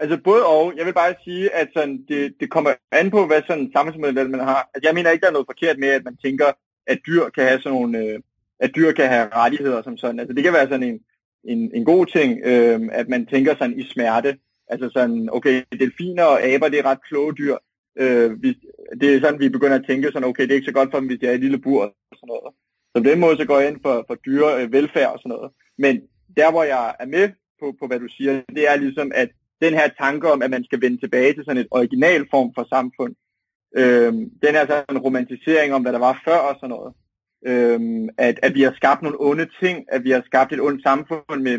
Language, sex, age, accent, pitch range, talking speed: Danish, male, 30-49, native, 125-155 Hz, 255 wpm